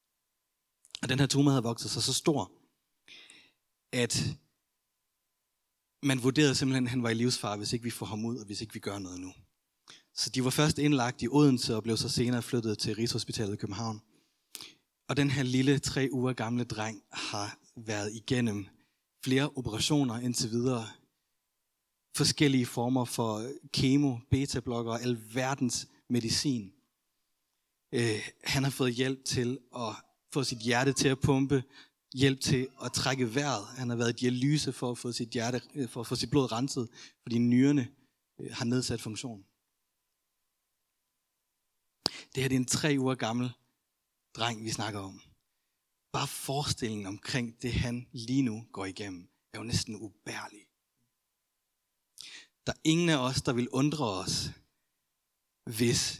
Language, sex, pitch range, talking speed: Danish, male, 115-135 Hz, 155 wpm